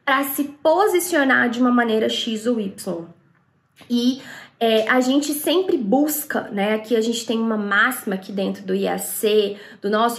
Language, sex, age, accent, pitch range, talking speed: Portuguese, female, 20-39, Brazilian, 220-265 Hz, 160 wpm